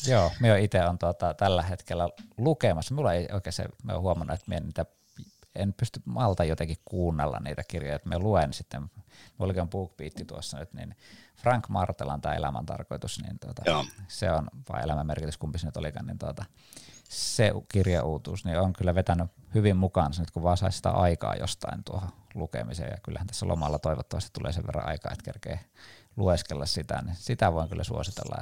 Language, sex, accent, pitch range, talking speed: Finnish, male, native, 85-110 Hz, 170 wpm